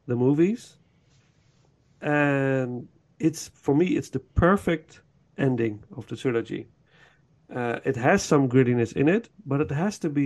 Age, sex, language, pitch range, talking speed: 50-69, male, Dutch, 130-160 Hz, 145 wpm